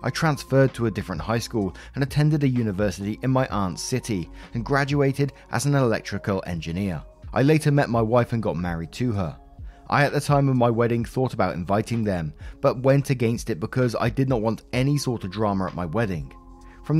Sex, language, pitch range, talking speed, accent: male, English, 100-135 Hz, 210 wpm, British